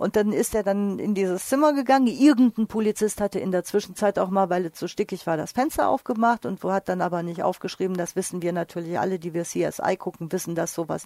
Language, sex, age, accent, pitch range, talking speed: German, female, 50-69, German, 185-220 Hz, 240 wpm